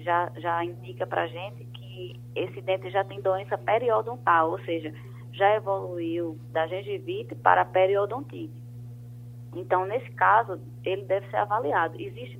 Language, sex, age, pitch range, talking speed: Portuguese, female, 20-39, 120-170 Hz, 140 wpm